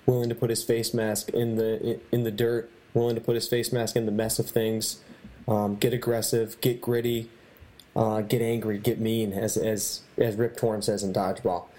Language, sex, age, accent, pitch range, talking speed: English, male, 20-39, American, 110-120 Hz, 205 wpm